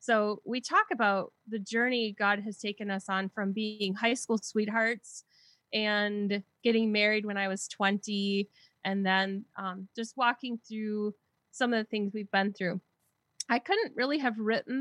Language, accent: English, American